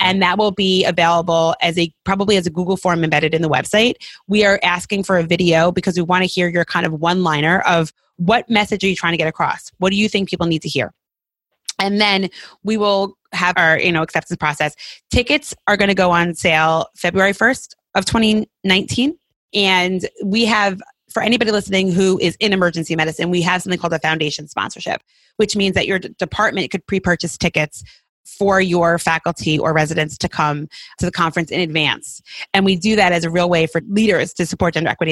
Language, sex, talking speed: English, female, 205 wpm